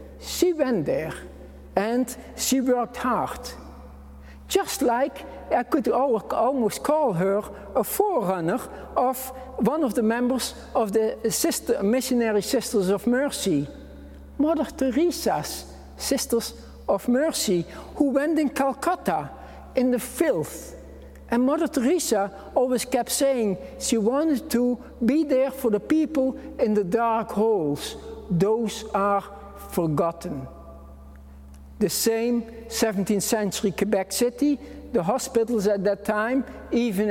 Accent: Dutch